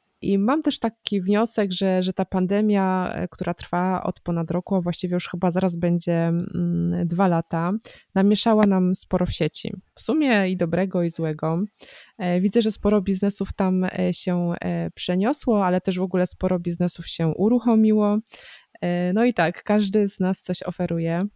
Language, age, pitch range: Polish, 20-39, 175-200 Hz